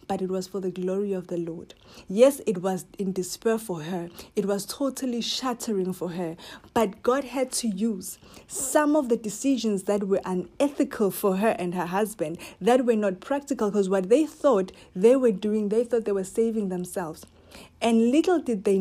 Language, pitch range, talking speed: English, 180-230 Hz, 190 wpm